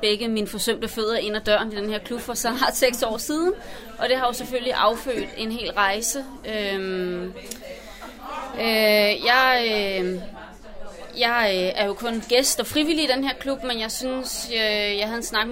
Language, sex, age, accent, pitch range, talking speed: Danish, female, 30-49, native, 205-245 Hz, 180 wpm